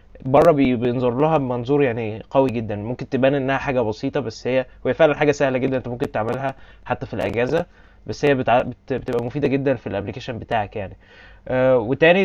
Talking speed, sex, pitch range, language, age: 180 wpm, male, 115-140 Hz, Arabic, 20-39